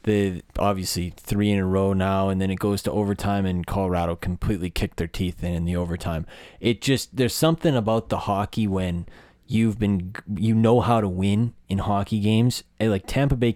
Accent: American